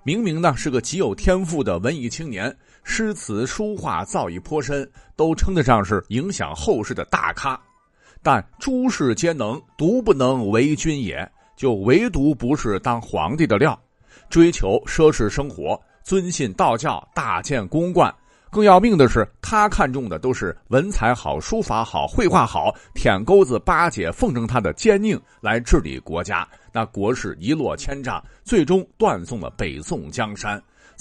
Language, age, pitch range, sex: Chinese, 50-69, 115-170 Hz, male